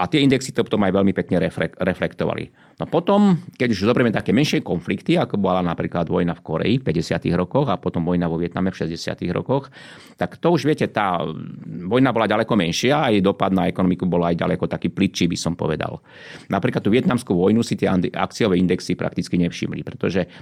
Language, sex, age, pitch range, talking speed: Slovak, male, 30-49, 85-120 Hz, 200 wpm